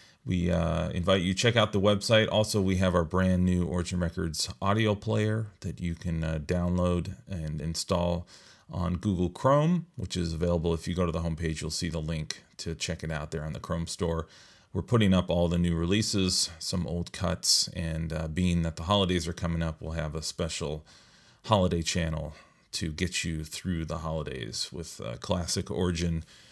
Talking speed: 195 wpm